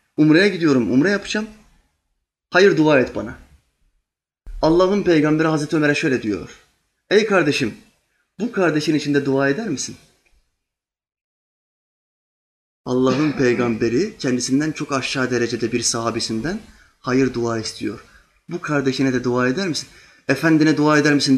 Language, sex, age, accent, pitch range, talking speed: Turkish, male, 30-49, native, 115-165 Hz, 120 wpm